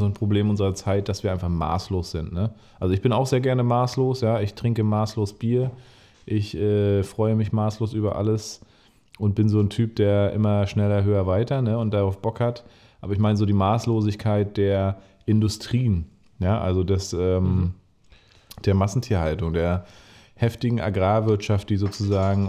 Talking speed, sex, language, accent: 170 wpm, male, German, German